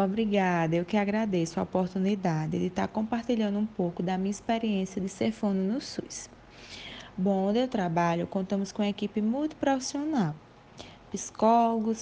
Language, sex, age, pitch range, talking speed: Portuguese, female, 20-39, 185-225 Hz, 150 wpm